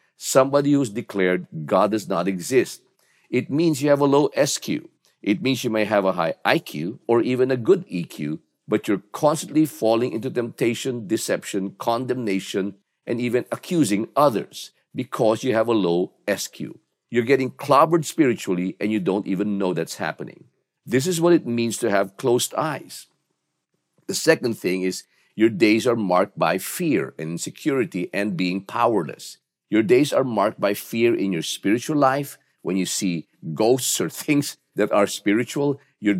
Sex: male